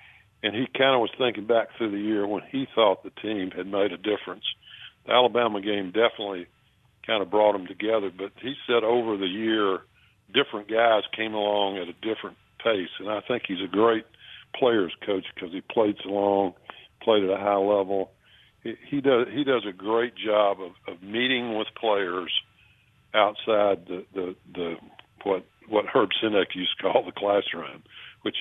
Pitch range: 100-115 Hz